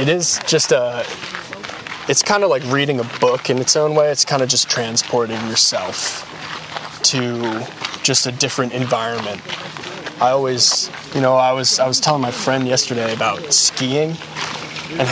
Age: 20-39